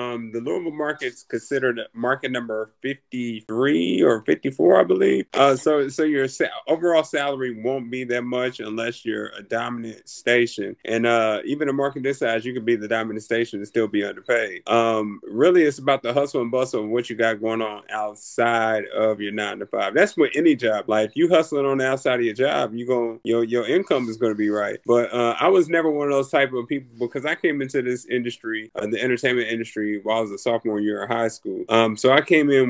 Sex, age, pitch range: male, 30-49, 115-140 Hz